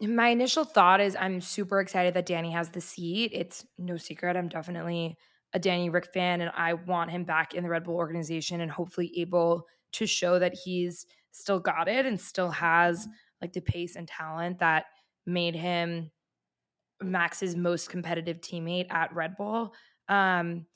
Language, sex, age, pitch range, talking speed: English, female, 20-39, 175-195 Hz, 175 wpm